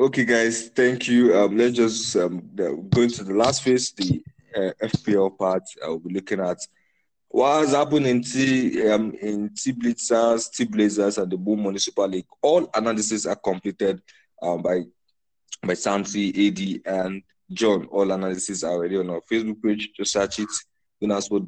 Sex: male